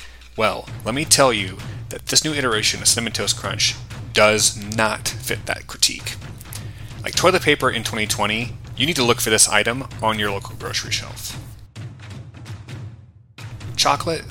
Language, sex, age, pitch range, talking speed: English, male, 30-49, 105-120 Hz, 150 wpm